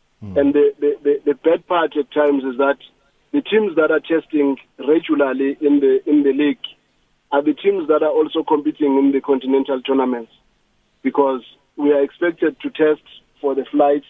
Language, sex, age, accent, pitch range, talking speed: English, male, 40-59, South African, 140-160 Hz, 180 wpm